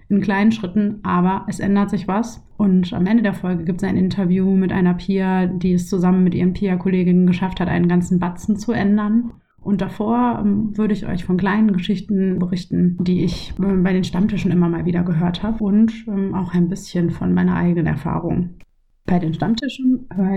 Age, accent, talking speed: 30-49, German, 195 wpm